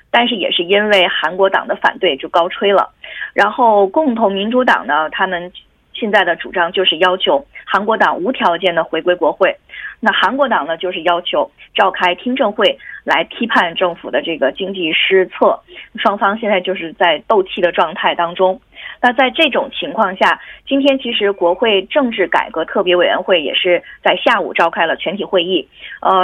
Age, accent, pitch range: 20-39, Chinese, 180-260 Hz